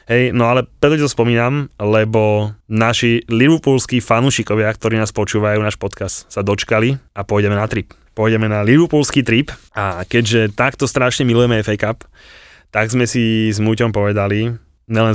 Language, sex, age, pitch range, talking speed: Slovak, male, 20-39, 105-125 Hz, 155 wpm